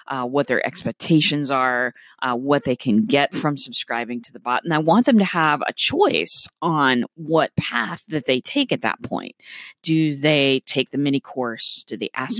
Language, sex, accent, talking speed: English, female, American, 200 wpm